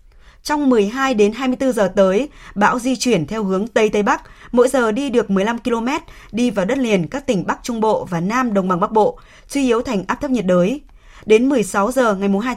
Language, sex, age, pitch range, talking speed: Vietnamese, female, 20-39, 200-255 Hz, 225 wpm